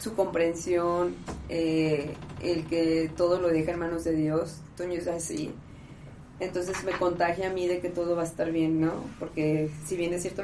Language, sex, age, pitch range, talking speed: Spanish, female, 20-39, 160-180 Hz, 190 wpm